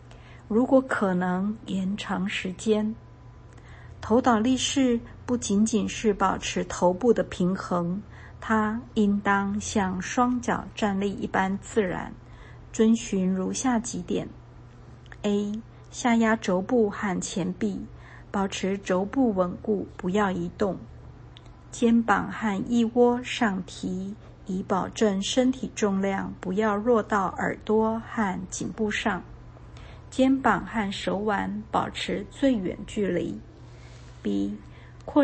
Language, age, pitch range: Chinese, 50-69, 185-225 Hz